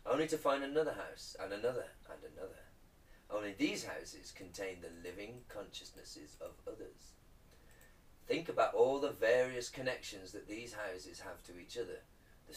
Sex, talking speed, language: male, 155 wpm, English